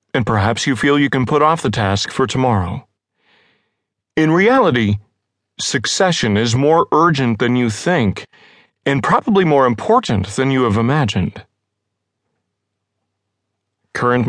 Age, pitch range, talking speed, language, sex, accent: 40-59, 110-145 Hz, 125 wpm, English, male, American